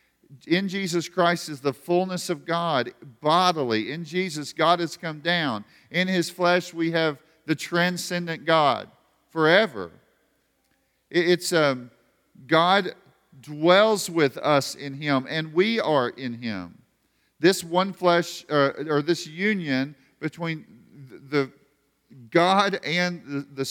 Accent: American